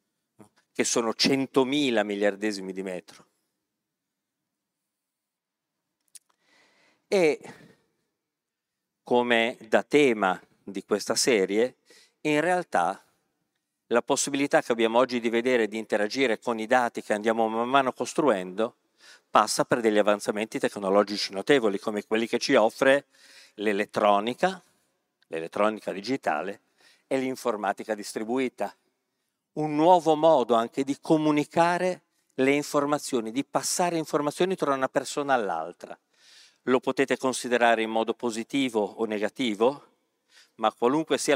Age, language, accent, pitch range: 50-69, Italian, native, 110-140 Hz